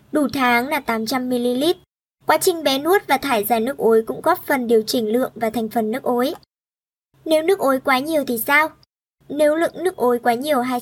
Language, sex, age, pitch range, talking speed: Vietnamese, male, 20-39, 240-315 Hz, 205 wpm